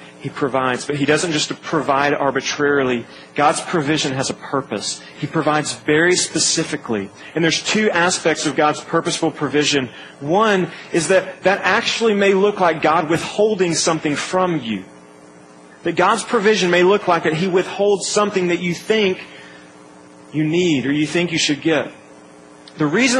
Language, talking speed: English, 160 wpm